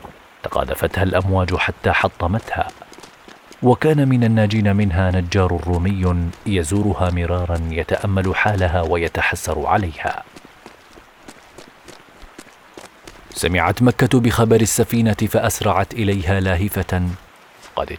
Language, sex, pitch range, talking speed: Arabic, male, 90-110 Hz, 80 wpm